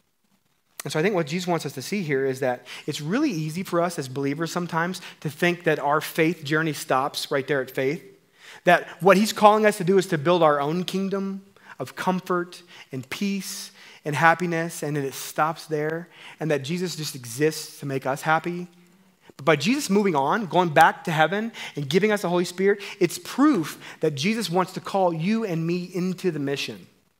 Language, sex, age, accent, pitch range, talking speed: English, male, 30-49, American, 145-185 Hz, 205 wpm